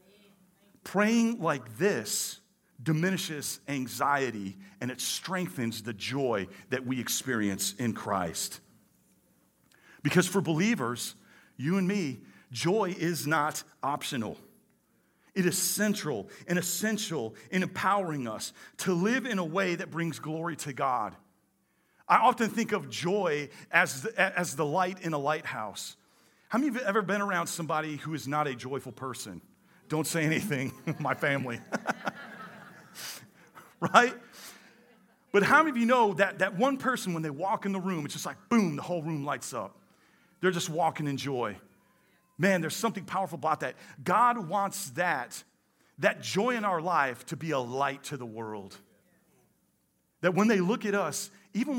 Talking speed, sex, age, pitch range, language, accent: 155 wpm, male, 40-59, 140-195 Hz, English, American